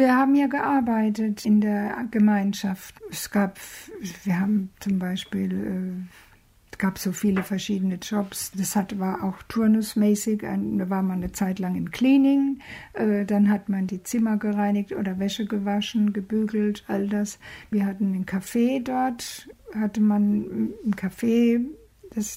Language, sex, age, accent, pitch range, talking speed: German, female, 60-79, German, 205-245 Hz, 140 wpm